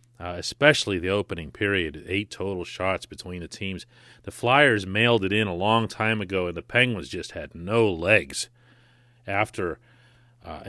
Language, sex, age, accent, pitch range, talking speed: English, male, 40-59, American, 95-120 Hz, 165 wpm